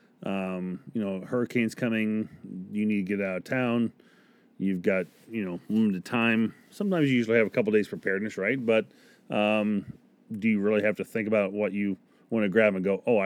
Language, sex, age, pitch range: English, male, 30-49, 100-125 Hz